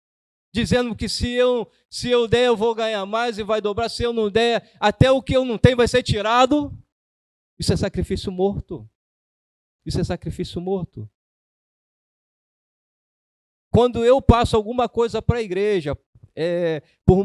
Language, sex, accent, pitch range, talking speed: Portuguese, male, Brazilian, 160-220 Hz, 150 wpm